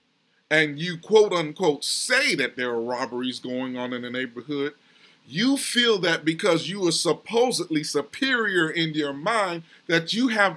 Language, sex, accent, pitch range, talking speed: English, male, American, 155-220 Hz, 155 wpm